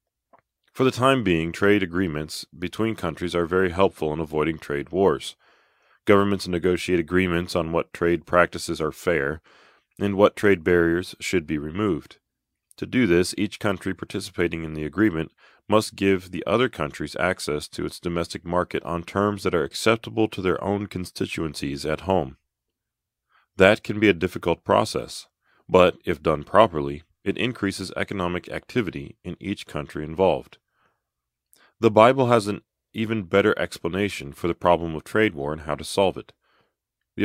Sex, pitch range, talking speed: male, 85-100 Hz, 160 wpm